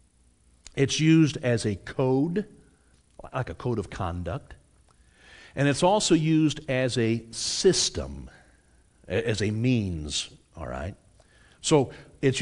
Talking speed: 115 wpm